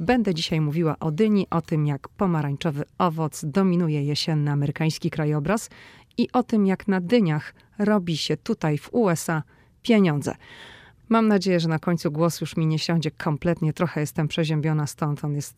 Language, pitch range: Polish, 150-180 Hz